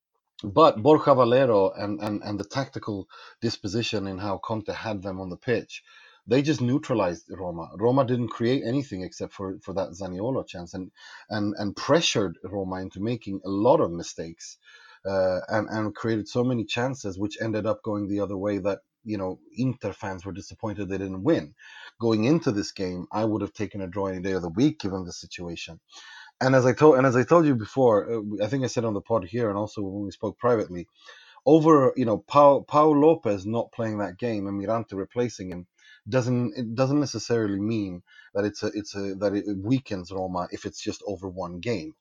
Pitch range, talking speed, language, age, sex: 95-120 Hz, 200 wpm, English, 30-49, male